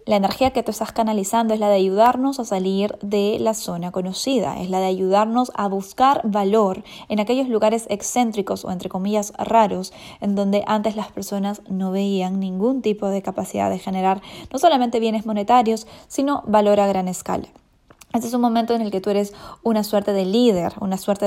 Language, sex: Spanish, female